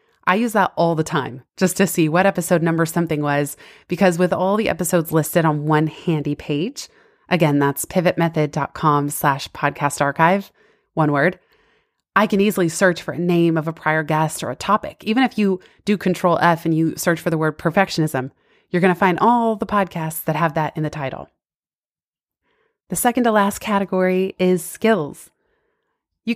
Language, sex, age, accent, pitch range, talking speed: English, female, 20-39, American, 165-210 Hz, 180 wpm